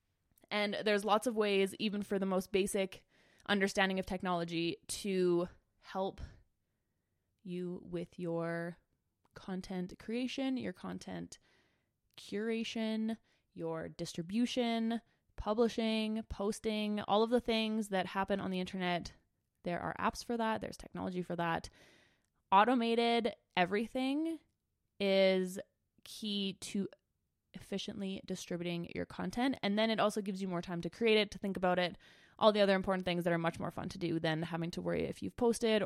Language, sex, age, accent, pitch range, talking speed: English, female, 20-39, American, 180-220 Hz, 145 wpm